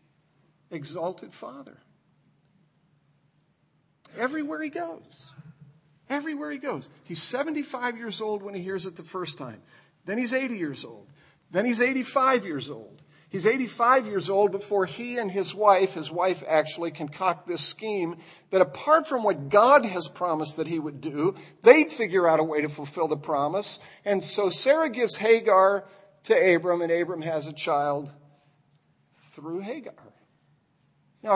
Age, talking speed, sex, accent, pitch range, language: 50-69, 150 wpm, male, American, 160-235 Hz, English